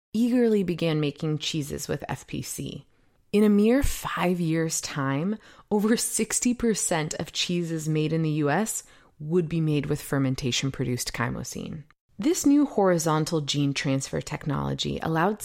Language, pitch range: English, 150-215 Hz